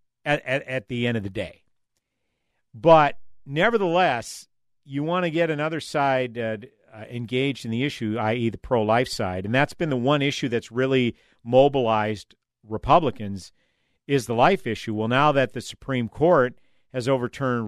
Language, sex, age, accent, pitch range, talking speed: English, male, 50-69, American, 105-130 Hz, 165 wpm